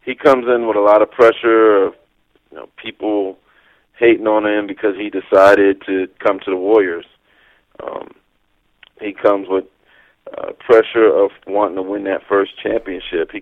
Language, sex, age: English, male, 40-59